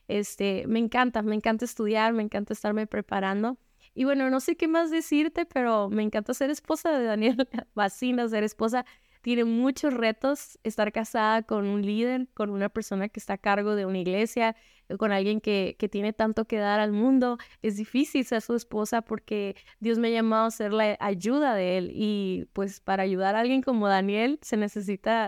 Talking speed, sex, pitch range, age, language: 190 wpm, female, 210-250 Hz, 20-39, Spanish